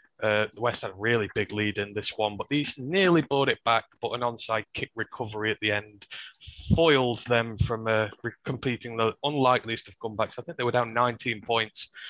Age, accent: 20-39, British